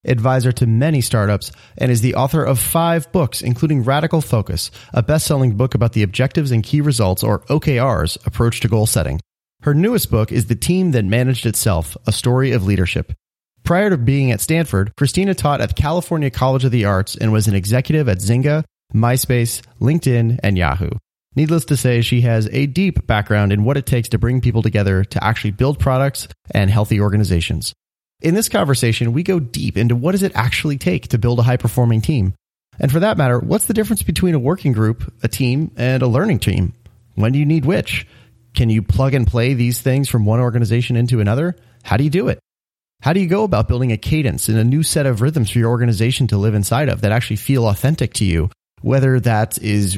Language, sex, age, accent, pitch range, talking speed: English, male, 30-49, American, 110-140 Hz, 210 wpm